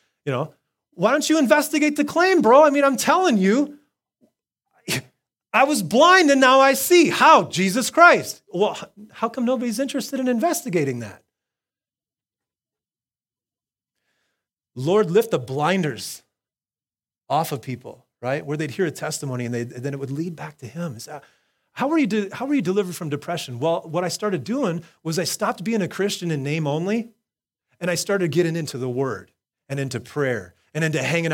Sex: male